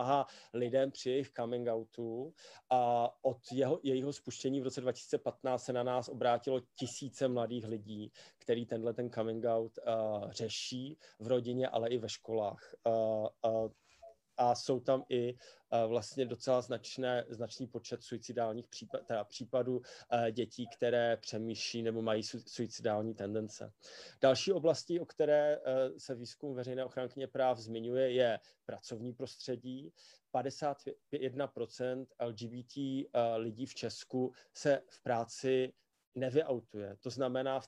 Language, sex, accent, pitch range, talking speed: Czech, male, native, 115-135 Hz, 135 wpm